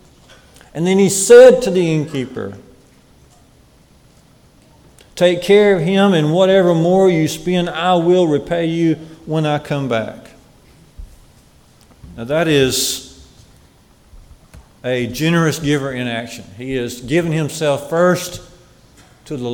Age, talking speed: 50-69, 120 wpm